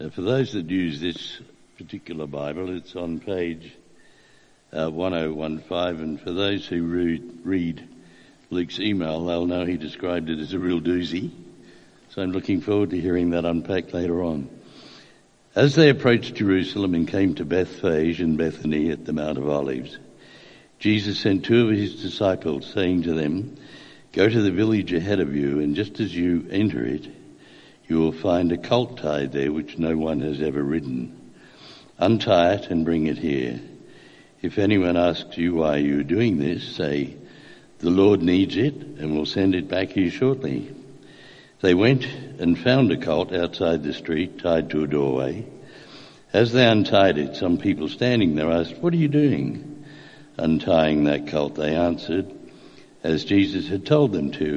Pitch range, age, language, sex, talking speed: 75-100 Hz, 60-79, English, male, 170 wpm